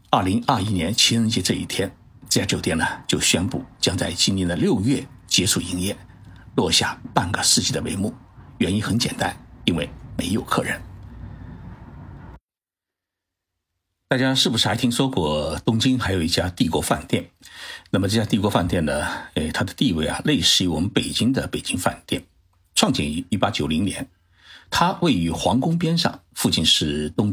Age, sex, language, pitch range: 60-79, male, Chinese, 90-120 Hz